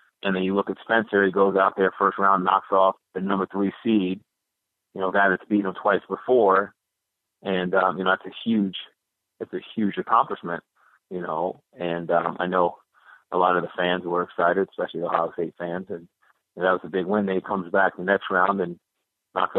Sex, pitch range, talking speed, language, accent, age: male, 90-100 Hz, 220 wpm, English, American, 30-49